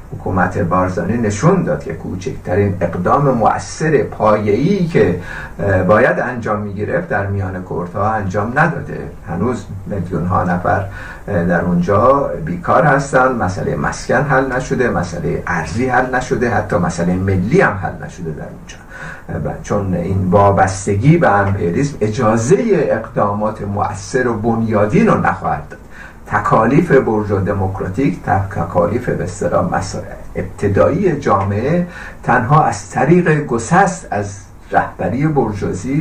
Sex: male